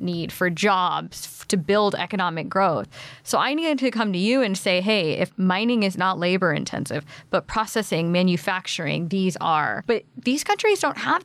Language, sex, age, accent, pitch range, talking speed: English, female, 20-39, American, 185-235 Hz, 175 wpm